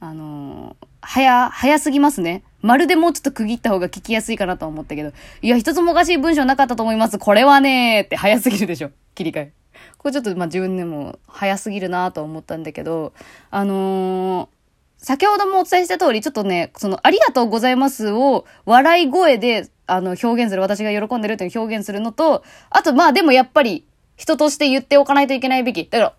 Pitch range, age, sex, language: 190-290 Hz, 20-39, female, Japanese